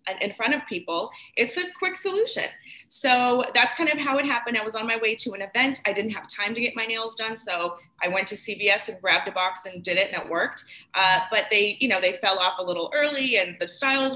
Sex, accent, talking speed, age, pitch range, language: female, American, 260 wpm, 20-39, 185-230 Hz, English